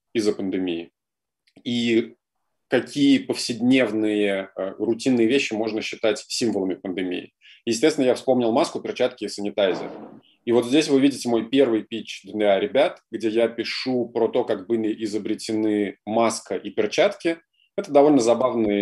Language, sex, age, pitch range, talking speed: Russian, male, 20-39, 105-130 Hz, 135 wpm